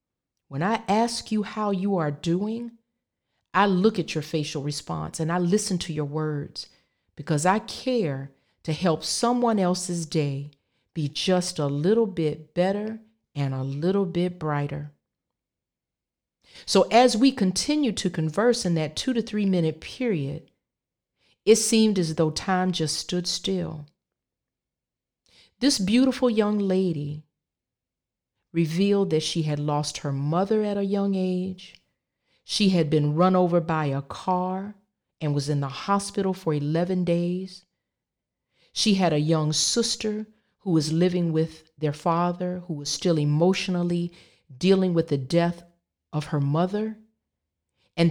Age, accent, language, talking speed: 40-59, American, English, 140 wpm